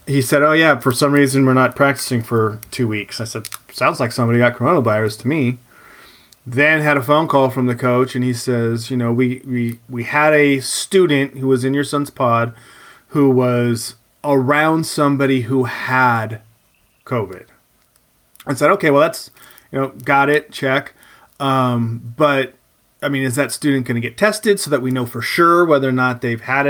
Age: 30-49